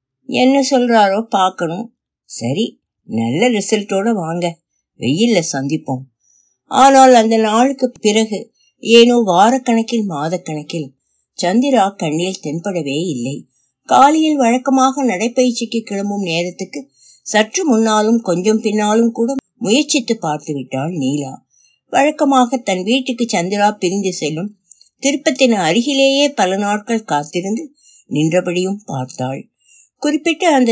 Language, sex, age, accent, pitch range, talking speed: Tamil, female, 60-79, native, 160-250 Hz, 90 wpm